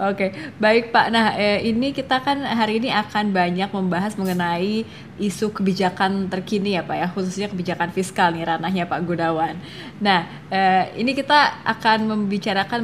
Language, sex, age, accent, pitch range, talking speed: Indonesian, female, 20-39, native, 180-220 Hz, 150 wpm